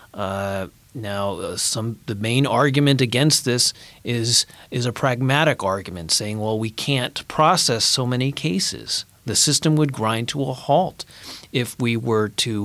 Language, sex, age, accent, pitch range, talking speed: English, male, 30-49, American, 110-135 Hz, 155 wpm